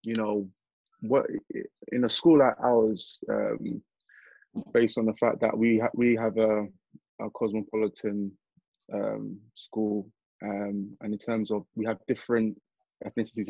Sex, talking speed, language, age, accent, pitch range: male, 140 wpm, English, 20-39, British, 105-120 Hz